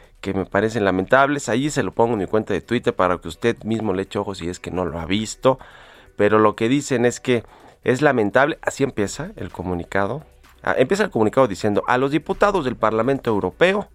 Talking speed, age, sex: 215 wpm, 40-59, male